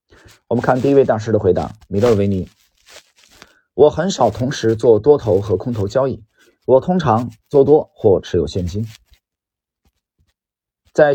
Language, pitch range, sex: Chinese, 100-145 Hz, male